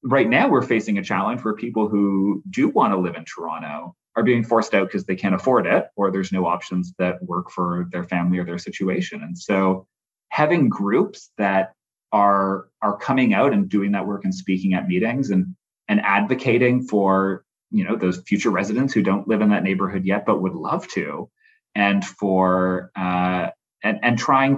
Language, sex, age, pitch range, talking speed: English, male, 30-49, 95-120 Hz, 195 wpm